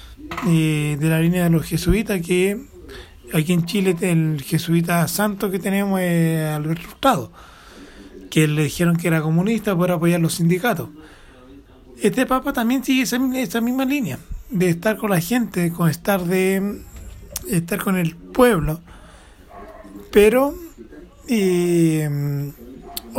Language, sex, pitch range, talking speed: Spanish, male, 160-205 Hz, 135 wpm